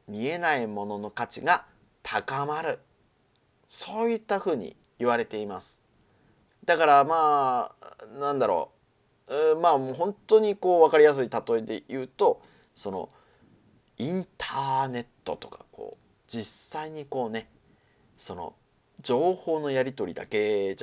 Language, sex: Japanese, male